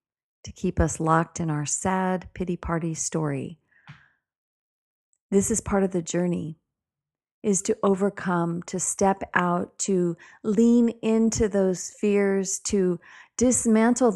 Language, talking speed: English, 125 wpm